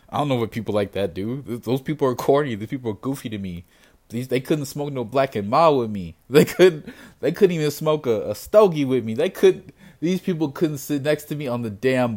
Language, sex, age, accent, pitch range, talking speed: English, male, 20-39, American, 105-140 Hz, 250 wpm